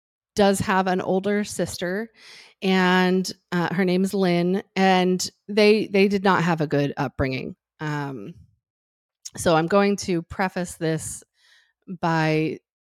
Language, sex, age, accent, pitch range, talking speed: English, female, 30-49, American, 160-200 Hz, 130 wpm